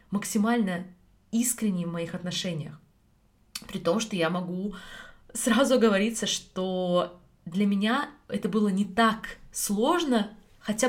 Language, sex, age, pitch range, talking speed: Russian, female, 20-39, 190-235 Hz, 115 wpm